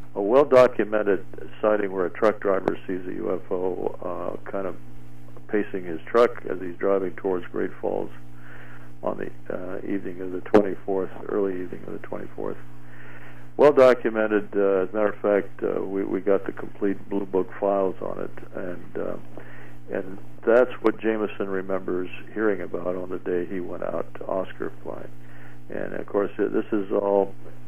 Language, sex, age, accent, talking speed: English, male, 60-79, American, 160 wpm